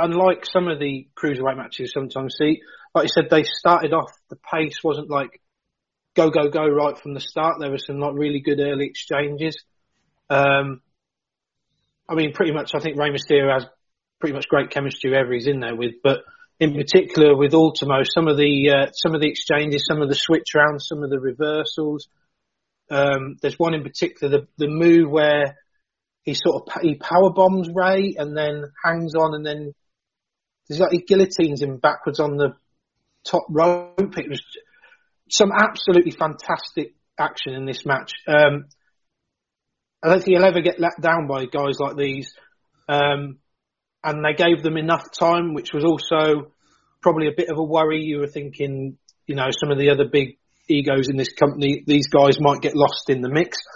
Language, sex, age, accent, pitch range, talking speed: English, male, 30-49, British, 140-165 Hz, 185 wpm